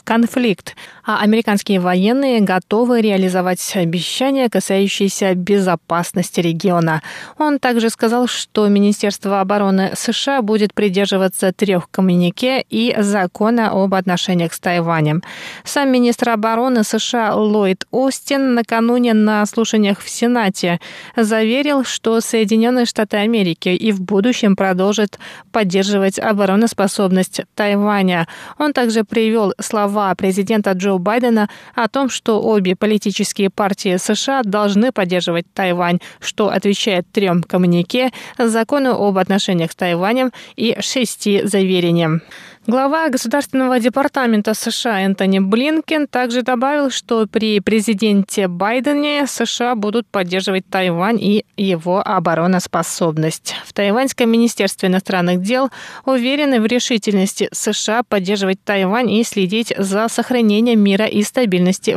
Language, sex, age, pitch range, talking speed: Russian, female, 20-39, 190-235 Hz, 110 wpm